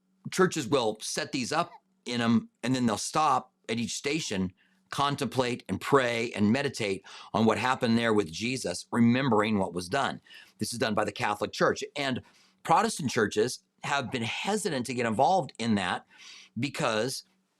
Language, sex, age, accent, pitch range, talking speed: English, male, 40-59, American, 115-165 Hz, 165 wpm